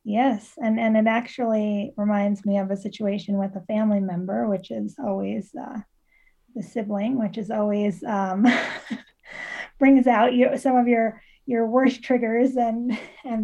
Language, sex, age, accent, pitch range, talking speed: English, female, 20-39, American, 205-245 Hz, 150 wpm